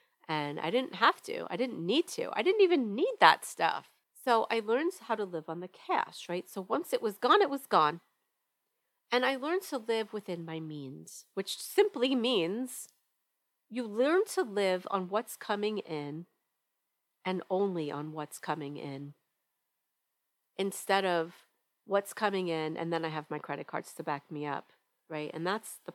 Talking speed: 180 wpm